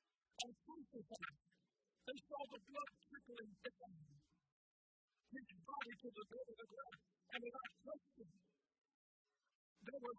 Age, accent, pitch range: 40-59, American, 200-260 Hz